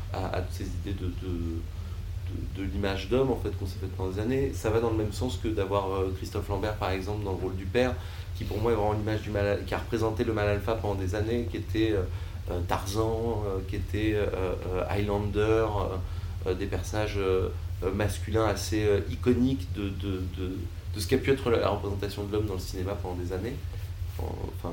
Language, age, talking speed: French, 30-49, 210 wpm